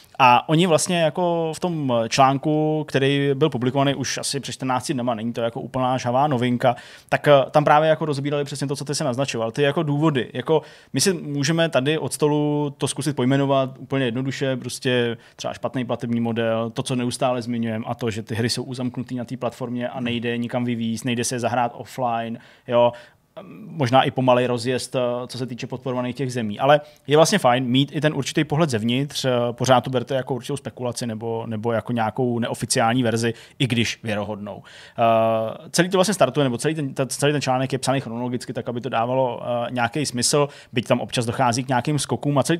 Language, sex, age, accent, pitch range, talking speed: Czech, male, 20-39, native, 120-145 Hz, 195 wpm